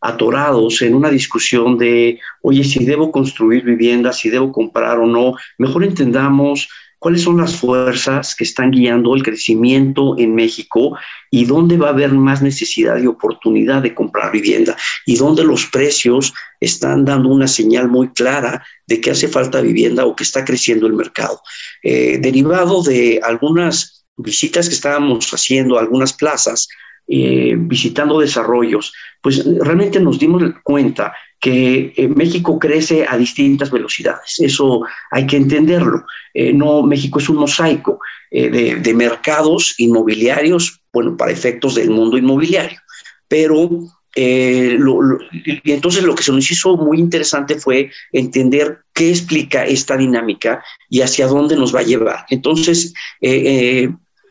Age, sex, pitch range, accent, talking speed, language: 50-69, male, 125-155 Hz, Mexican, 150 wpm, Spanish